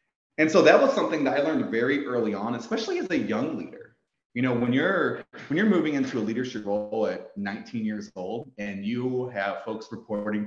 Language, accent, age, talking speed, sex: English, American, 30-49, 205 wpm, male